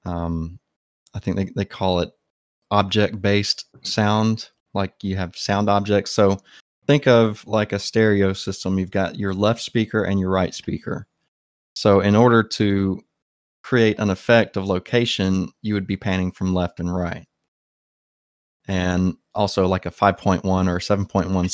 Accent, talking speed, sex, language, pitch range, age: American, 150 wpm, male, English, 90-105 Hz, 20-39